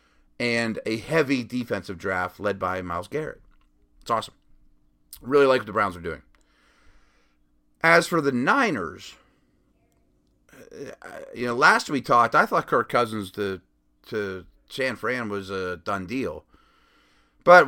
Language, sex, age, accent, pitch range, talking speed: English, male, 30-49, American, 95-135 Hz, 135 wpm